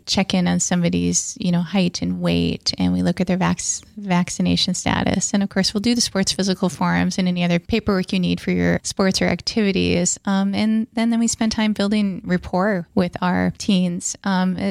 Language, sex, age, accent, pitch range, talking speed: English, female, 30-49, American, 180-205 Hz, 200 wpm